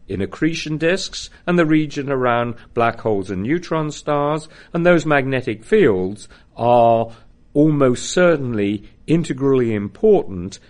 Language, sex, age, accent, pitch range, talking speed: English, male, 50-69, British, 100-140 Hz, 120 wpm